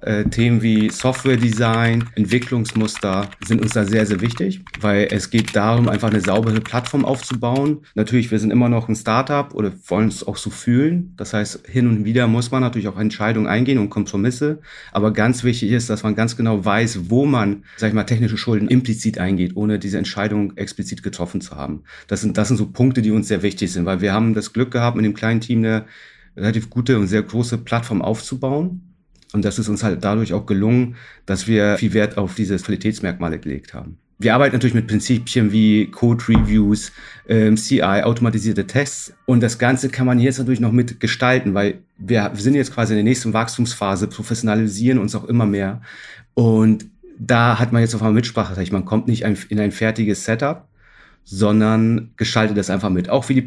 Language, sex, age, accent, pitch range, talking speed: German, male, 40-59, German, 105-120 Hz, 195 wpm